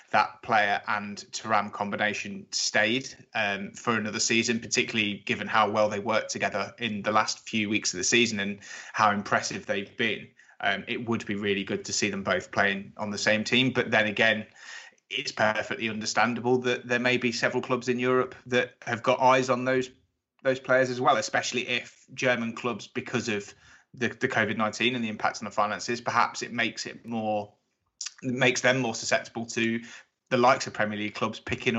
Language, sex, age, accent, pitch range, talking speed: English, male, 20-39, British, 105-125 Hz, 190 wpm